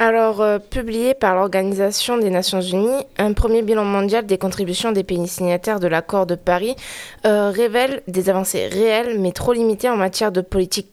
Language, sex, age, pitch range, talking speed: French, female, 20-39, 190-225 Hz, 180 wpm